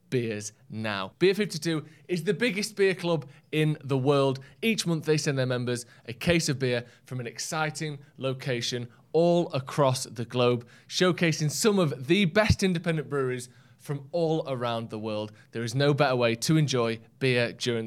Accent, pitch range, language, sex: British, 125-170 Hz, English, male